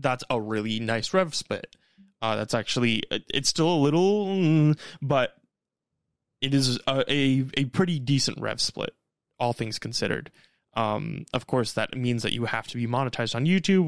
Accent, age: American, 20-39